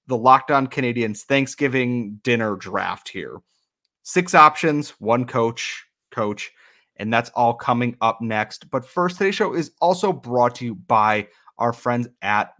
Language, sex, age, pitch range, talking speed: English, male, 30-49, 105-140 Hz, 150 wpm